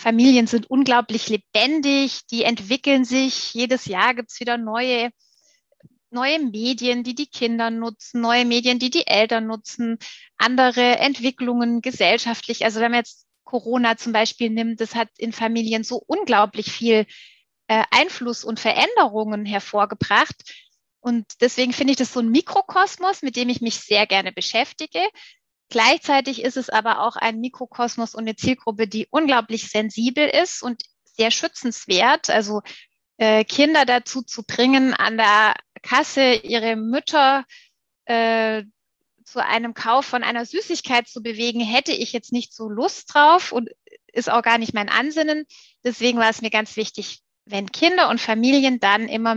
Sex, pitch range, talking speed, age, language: female, 225-260 Hz, 150 wpm, 30-49, German